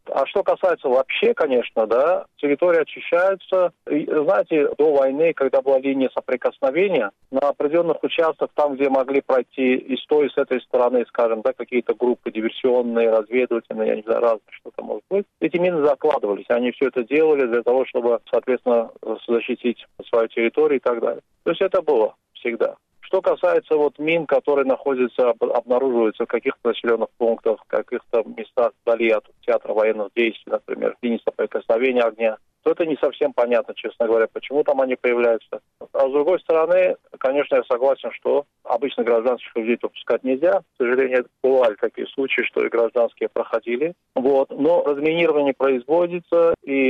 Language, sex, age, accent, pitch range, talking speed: Russian, male, 40-59, native, 120-170 Hz, 160 wpm